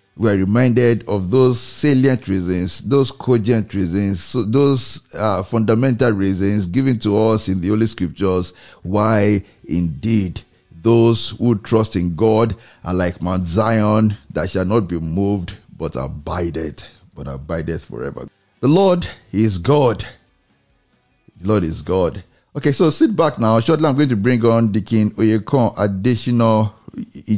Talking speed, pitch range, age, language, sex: 140 wpm, 95-120 Hz, 50-69, English, male